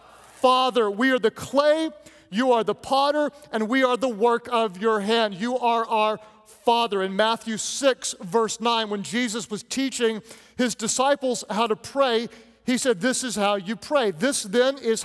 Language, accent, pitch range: English, American, 210-250 Hz